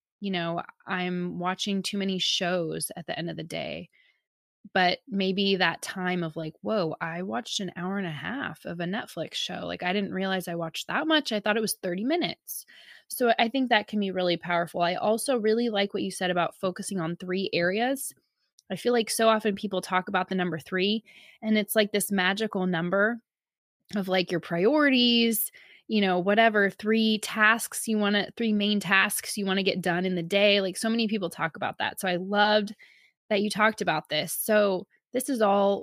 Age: 20-39